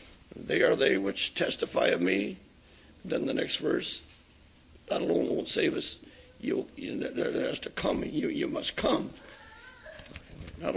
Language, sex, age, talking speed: English, male, 60-79, 150 wpm